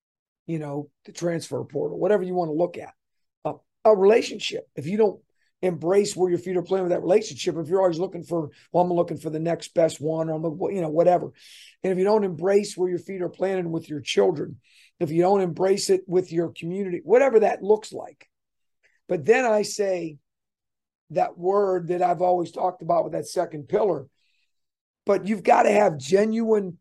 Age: 50-69